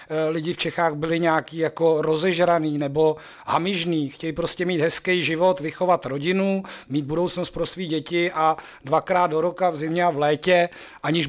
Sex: male